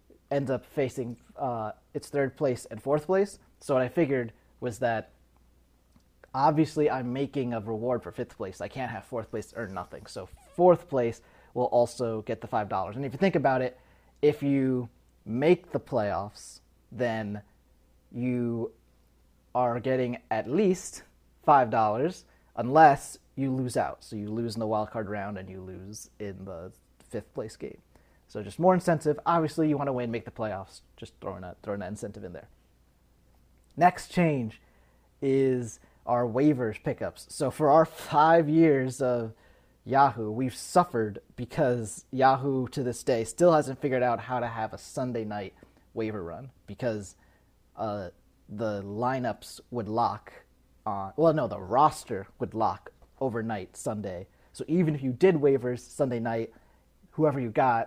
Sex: male